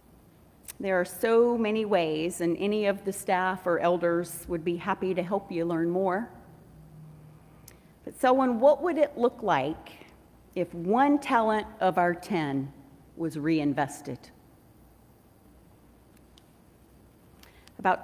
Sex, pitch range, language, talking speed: female, 175-220 Hz, English, 120 wpm